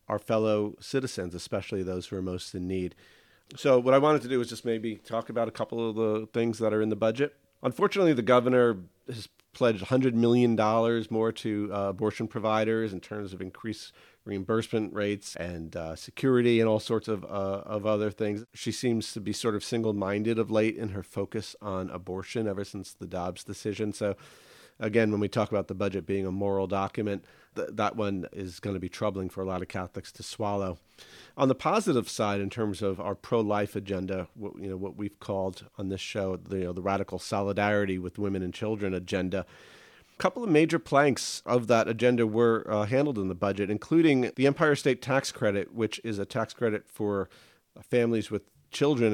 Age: 40-59